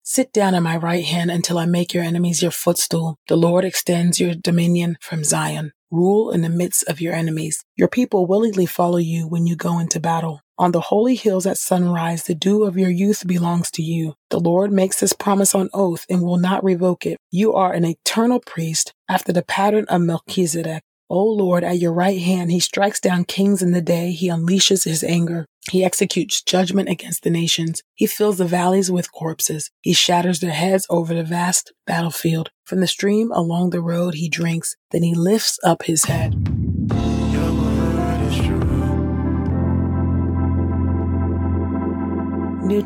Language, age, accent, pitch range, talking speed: English, 30-49, American, 160-185 Hz, 175 wpm